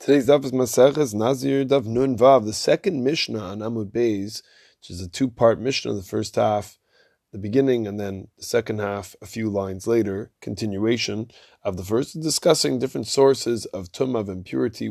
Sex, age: male, 20-39